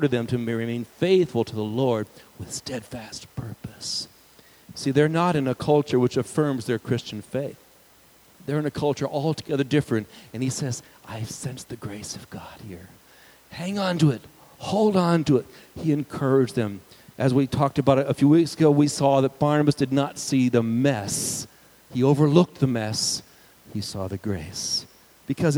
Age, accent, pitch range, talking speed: 50-69, American, 125-165 Hz, 175 wpm